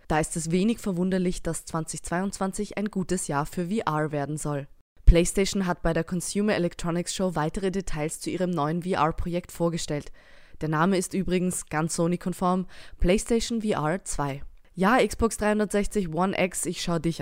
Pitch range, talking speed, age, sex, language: 160-190 Hz, 155 wpm, 20-39, female, German